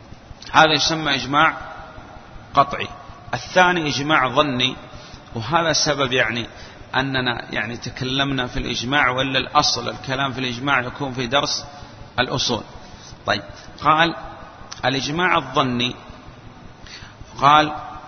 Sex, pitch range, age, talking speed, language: male, 125-150 Hz, 40-59, 95 wpm, Arabic